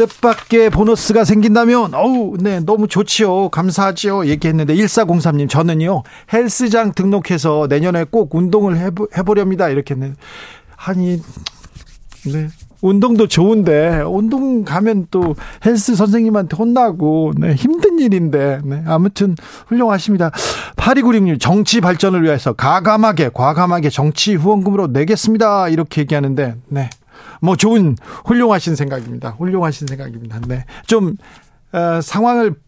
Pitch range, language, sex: 140-200 Hz, Korean, male